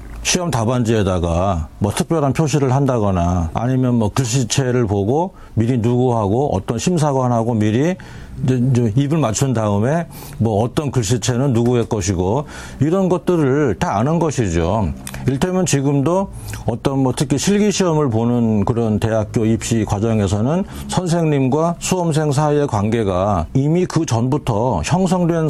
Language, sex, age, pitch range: Korean, male, 40-59, 110-160 Hz